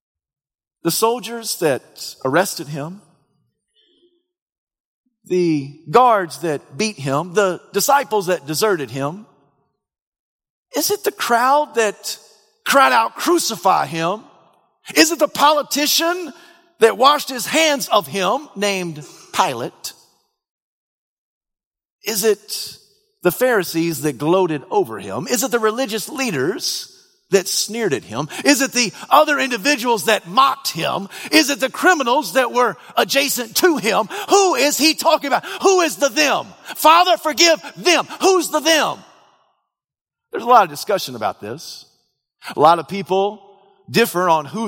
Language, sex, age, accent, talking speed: English, male, 50-69, American, 135 wpm